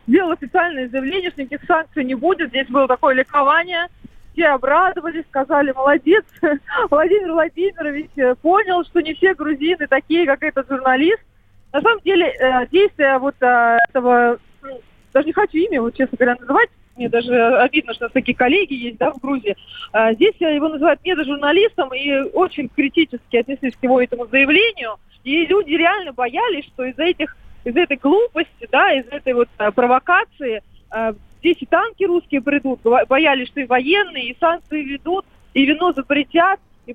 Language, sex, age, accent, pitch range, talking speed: Russian, female, 20-39, native, 265-355 Hz, 155 wpm